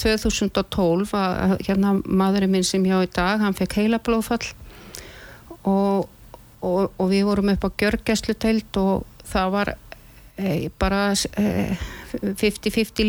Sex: female